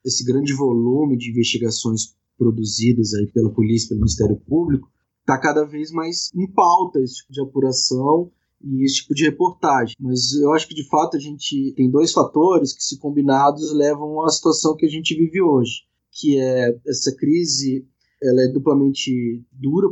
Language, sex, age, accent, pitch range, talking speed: Portuguese, male, 20-39, Brazilian, 125-155 Hz, 175 wpm